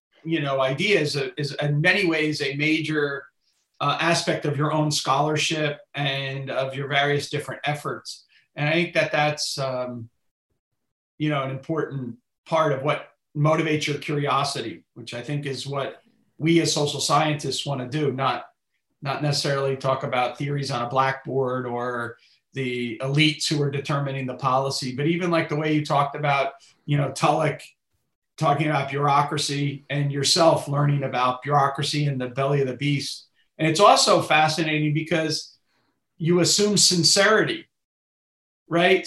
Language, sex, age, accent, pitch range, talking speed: English, male, 40-59, American, 140-165 Hz, 155 wpm